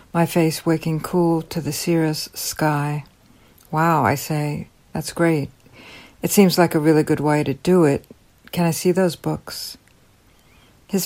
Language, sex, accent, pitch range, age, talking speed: English, female, American, 145-170 Hz, 60-79, 155 wpm